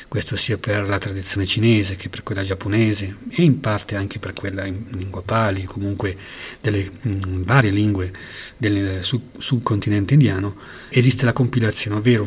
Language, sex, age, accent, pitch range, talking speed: Italian, male, 40-59, native, 100-125 Hz, 145 wpm